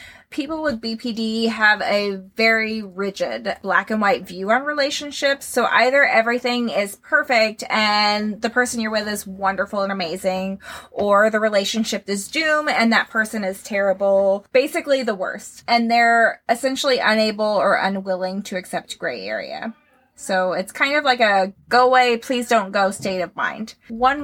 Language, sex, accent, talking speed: English, female, American, 150 wpm